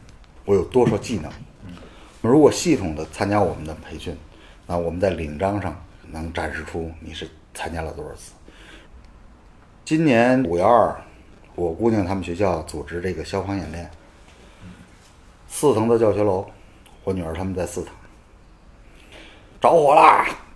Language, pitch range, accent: Chinese, 80-105 Hz, native